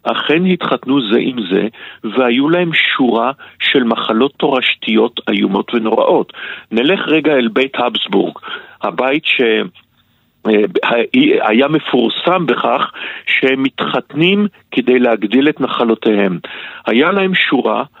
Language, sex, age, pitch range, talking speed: Hebrew, male, 50-69, 115-155 Hz, 105 wpm